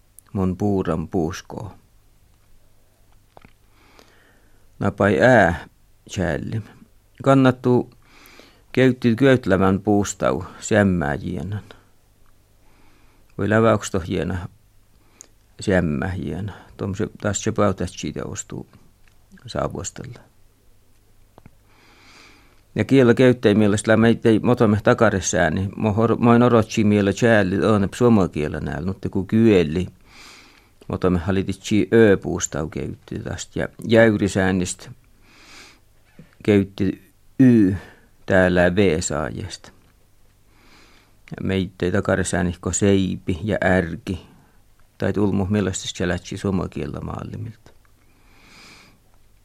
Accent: native